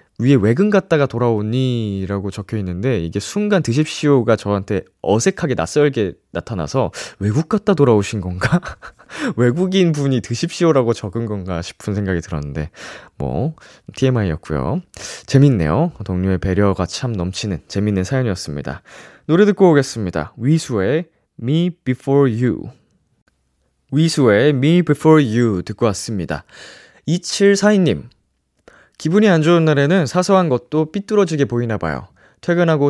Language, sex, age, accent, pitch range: Korean, male, 20-39, native, 100-160 Hz